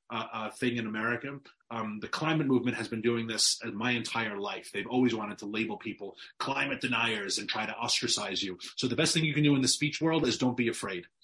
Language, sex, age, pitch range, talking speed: English, male, 30-49, 115-135 Hz, 235 wpm